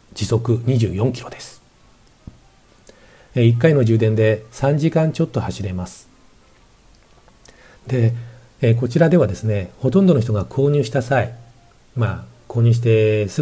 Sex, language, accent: male, Japanese, native